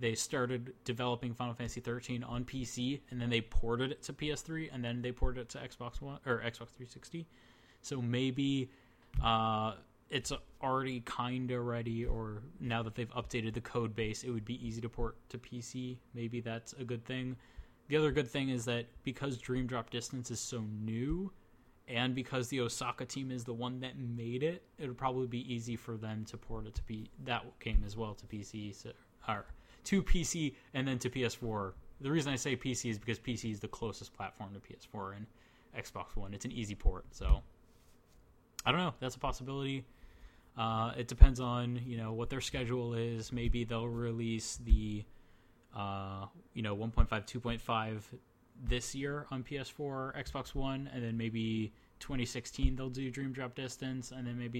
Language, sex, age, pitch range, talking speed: English, male, 20-39, 115-130 Hz, 180 wpm